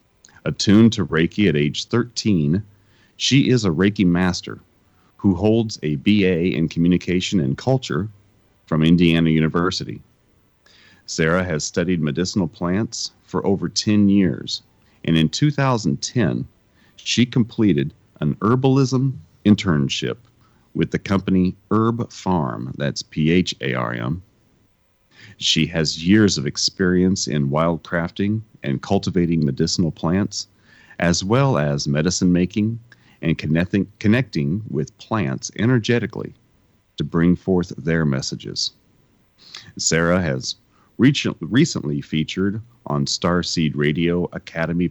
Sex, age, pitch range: male, 40-59, 80-110 Hz